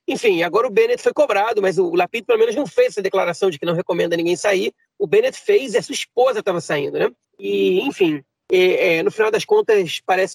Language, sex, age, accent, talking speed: Portuguese, male, 30-49, Brazilian, 230 wpm